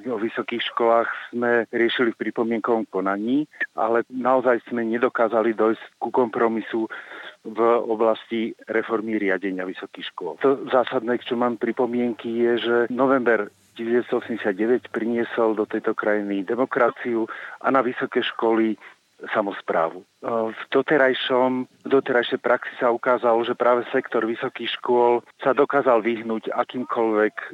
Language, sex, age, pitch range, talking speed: Slovak, male, 40-59, 110-125 Hz, 120 wpm